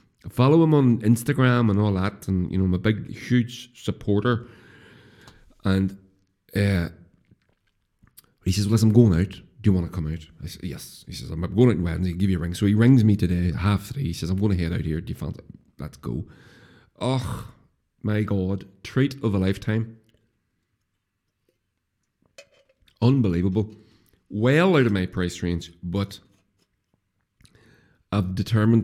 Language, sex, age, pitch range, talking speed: English, male, 40-59, 90-110 Hz, 170 wpm